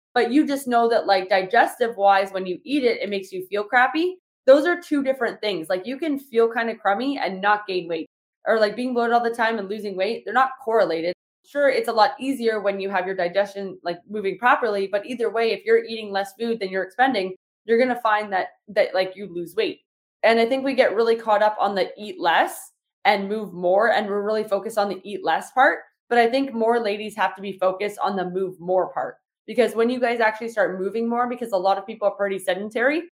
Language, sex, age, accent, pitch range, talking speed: English, female, 20-39, American, 195-245 Hz, 245 wpm